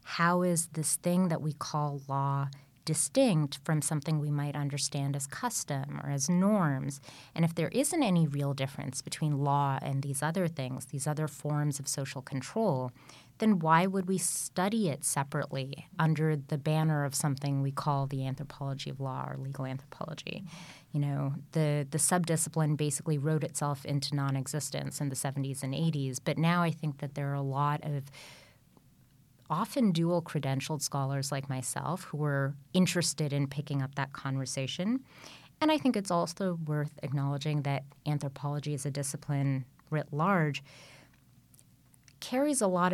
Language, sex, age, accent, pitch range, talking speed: English, female, 30-49, American, 140-160 Hz, 160 wpm